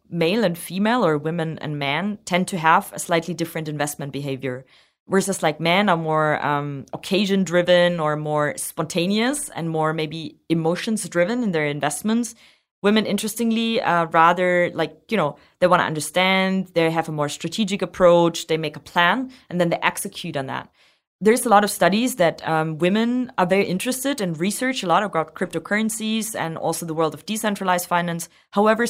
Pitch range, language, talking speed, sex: 160-195 Hz, English, 180 wpm, female